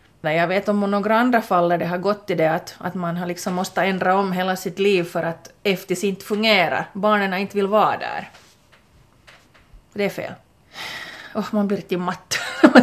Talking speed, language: 200 wpm, Swedish